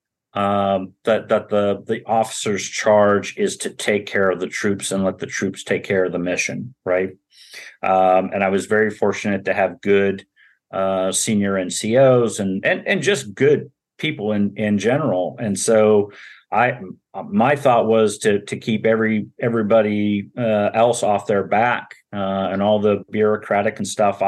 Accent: American